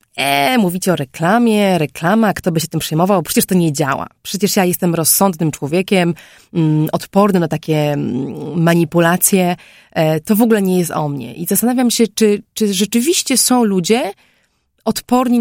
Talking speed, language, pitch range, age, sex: 150 wpm, Polish, 170-205 Hz, 20-39, female